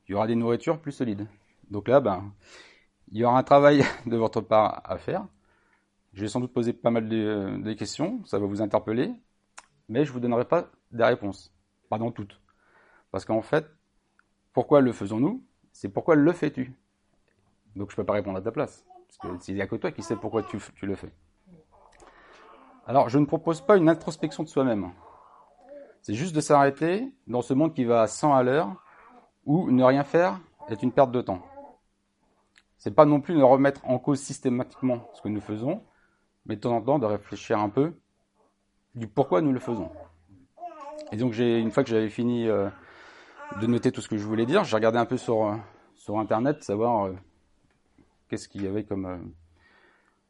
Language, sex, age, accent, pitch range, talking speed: French, male, 40-59, French, 105-140 Hz, 200 wpm